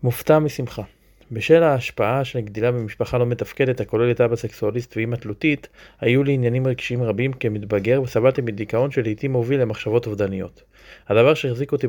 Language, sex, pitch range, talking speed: English, male, 110-130 Hz, 140 wpm